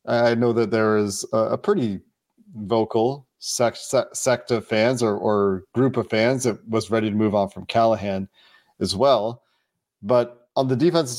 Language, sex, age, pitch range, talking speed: English, male, 30-49, 110-125 Hz, 165 wpm